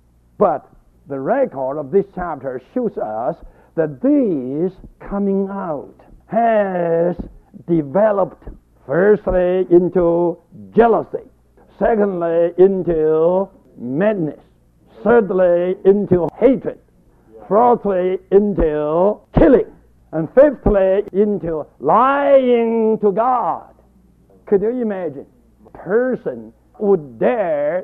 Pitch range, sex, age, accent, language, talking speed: 155-215 Hz, male, 60-79, American, English, 85 wpm